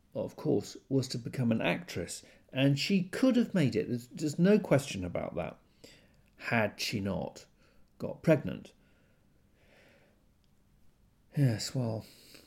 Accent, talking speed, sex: British, 125 wpm, male